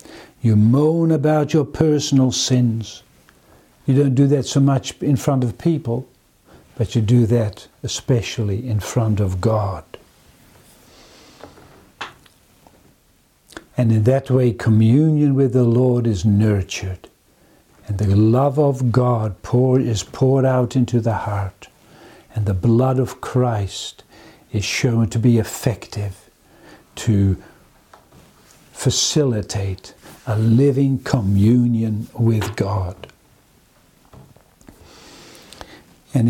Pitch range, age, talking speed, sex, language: 115-140 Hz, 60-79, 105 wpm, male, English